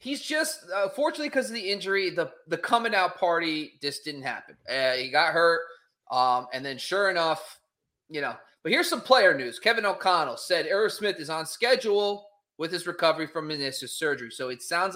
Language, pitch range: English, 150-195 Hz